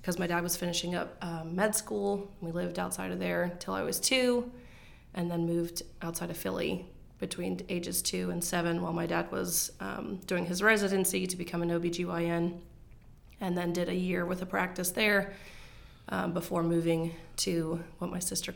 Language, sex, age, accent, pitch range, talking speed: English, female, 20-39, American, 165-190 Hz, 185 wpm